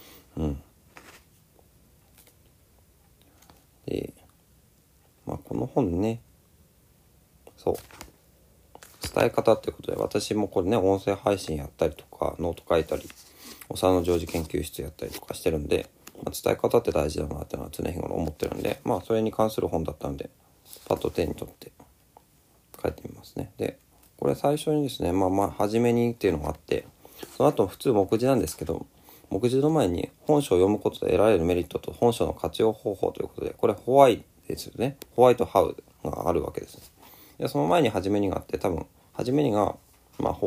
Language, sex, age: Japanese, male, 40-59